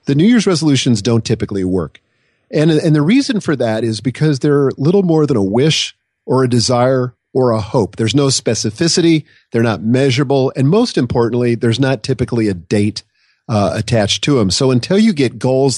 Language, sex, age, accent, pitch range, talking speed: English, male, 40-59, American, 110-145 Hz, 190 wpm